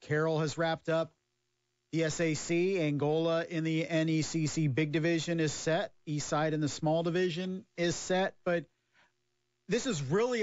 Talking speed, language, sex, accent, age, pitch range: 150 wpm, English, male, American, 40-59, 135-165 Hz